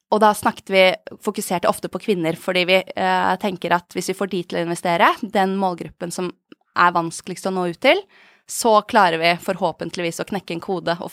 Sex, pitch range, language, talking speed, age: female, 180-220 Hz, English, 200 wpm, 20-39